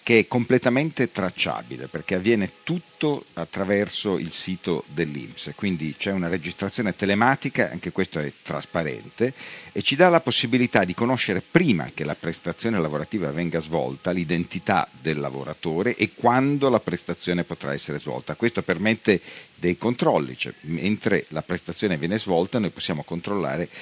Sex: male